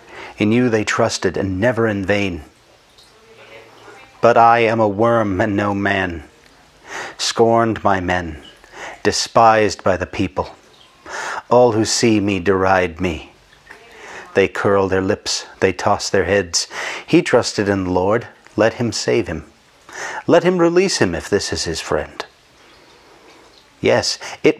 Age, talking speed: 40-59, 140 wpm